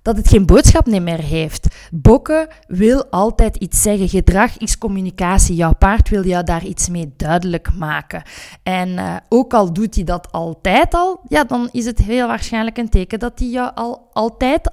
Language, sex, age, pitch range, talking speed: Dutch, female, 20-39, 180-240 Hz, 175 wpm